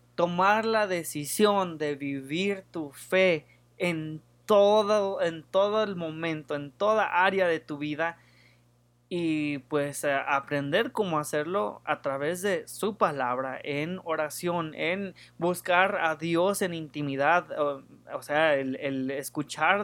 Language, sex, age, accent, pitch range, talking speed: English, male, 20-39, Mexican, 145-180 Hz, 130 wpm